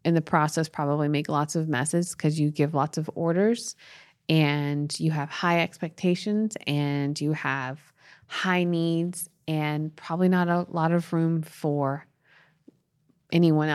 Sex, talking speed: female, 145 wpm